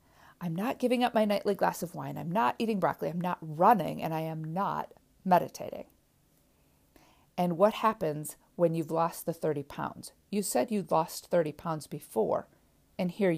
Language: English